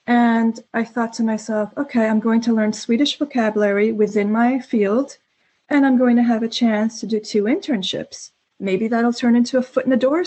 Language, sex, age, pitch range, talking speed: English, female, 30-49, 220-255 Hz, 205 wpm